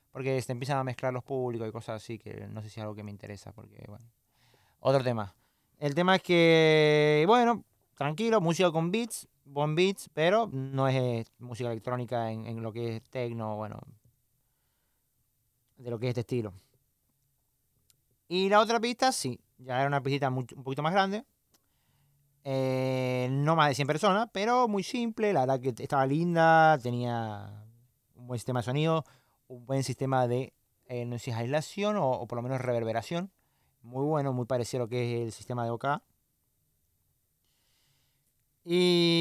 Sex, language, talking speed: male, Spanish, 170 wpm